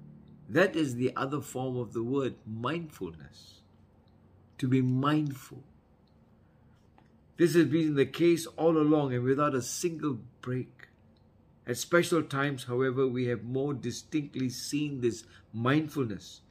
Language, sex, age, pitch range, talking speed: English, male, 60-79, 105-150 Hz, 125 wpm